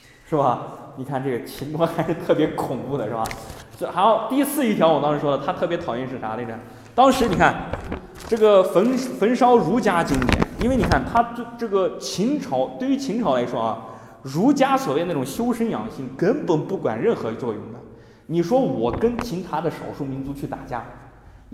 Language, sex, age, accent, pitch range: Chinese, male, 20-39, native, 135-230 Hz